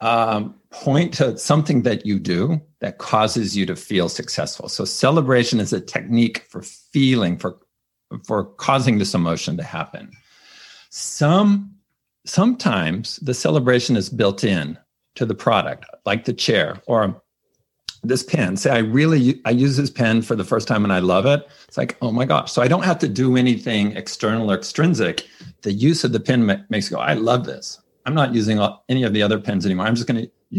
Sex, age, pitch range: male, 50-69, 110-135 Hz